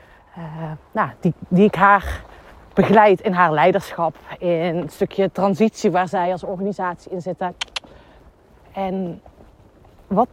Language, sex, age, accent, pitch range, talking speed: Dutch, female, 30-49, Dutch, 180-230 Hz, 130 wpm